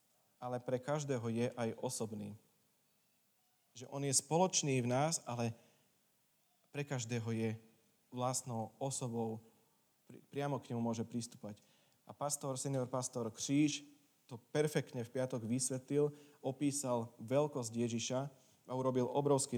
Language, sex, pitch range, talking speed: Slovak, male, 115-135 Hz, 120 wpm